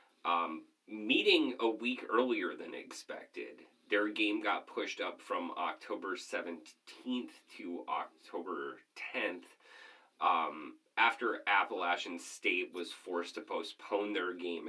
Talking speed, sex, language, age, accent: 115 wpm, male, English, 30-49, American